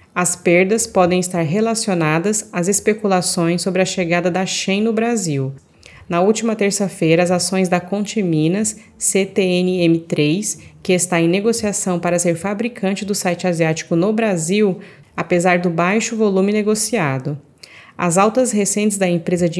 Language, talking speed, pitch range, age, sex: Portuguese, 140 wpm, 170-205 Hz, 30-49, female